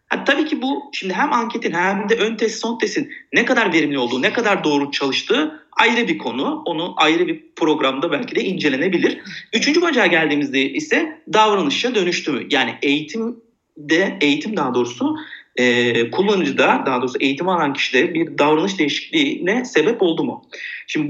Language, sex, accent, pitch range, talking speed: Turkish, male, native, 155-250 Hz, 160 wpm